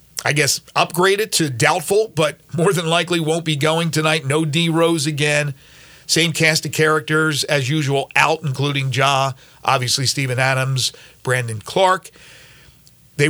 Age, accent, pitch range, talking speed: 50-69, American, 150-185 Hz, 140 wpm